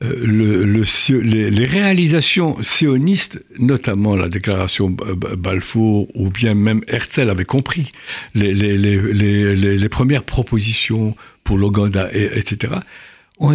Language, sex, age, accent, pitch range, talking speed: French, male, 60-79, French, 95-130 Hz, 115 wpm